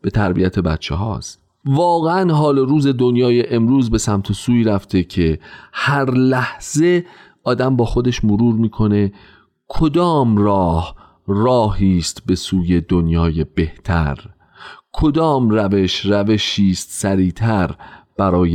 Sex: male